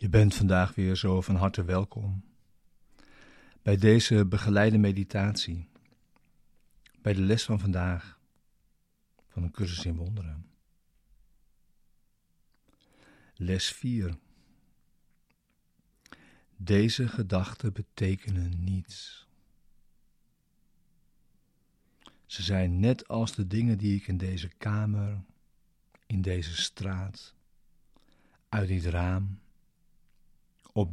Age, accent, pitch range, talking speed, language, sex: 50-69, Dutch, 95-105 Hz, 90 wpm, Dutch, male